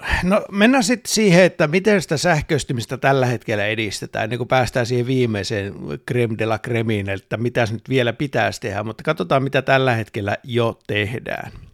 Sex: male